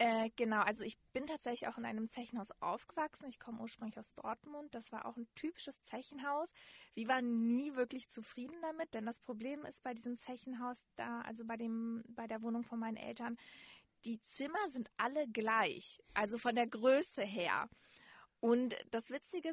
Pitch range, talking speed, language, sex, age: 225-285 Hz, 170 wpm, German, female, 20-39